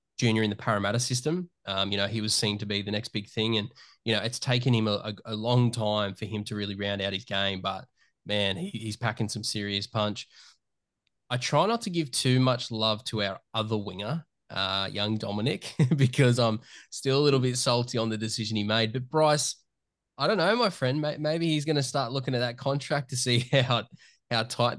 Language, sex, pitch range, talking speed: English, male, 105-125 Hz, 220 wpm